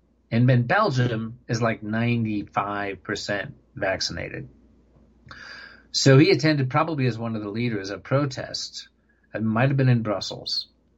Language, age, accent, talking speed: English, 50-69, American, 135 wpm